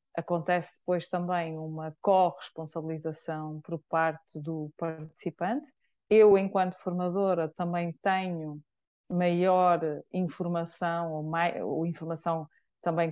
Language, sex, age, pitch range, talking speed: Portuguese, female, 20-39, 165-195 Hz, 85 wpm